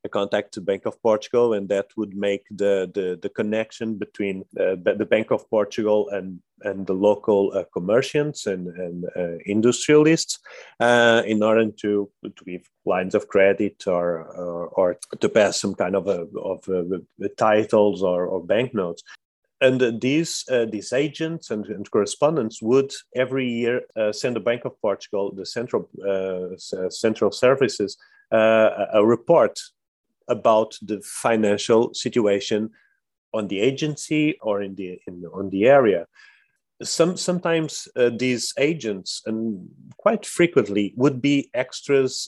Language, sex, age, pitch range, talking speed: English, male, 30-49, 105-135 Hz, 150 wpm